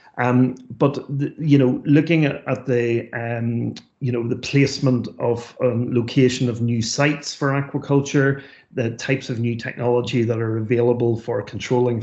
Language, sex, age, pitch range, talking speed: English, male, 30-49, 120-140 Hz, 160 wpm